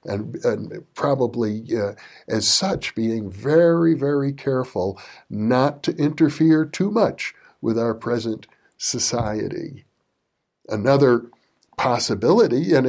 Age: 60-79